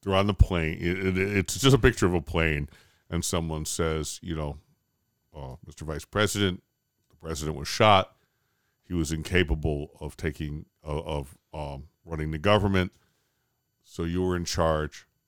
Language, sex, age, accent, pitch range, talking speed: English, male, 50-69, American, 85-115 Hz, 155 wpm